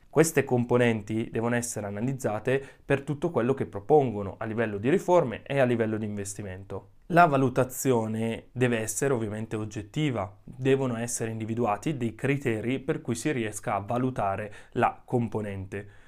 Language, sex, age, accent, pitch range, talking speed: Italian, male, 20-39, native, 115-165 Hz, 140 wpm